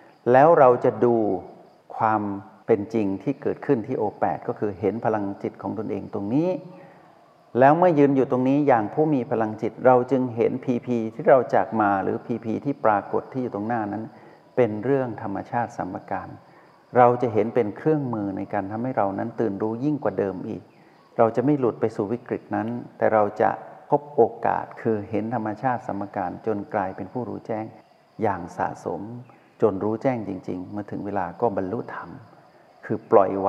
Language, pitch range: Thai, 105-130 Hz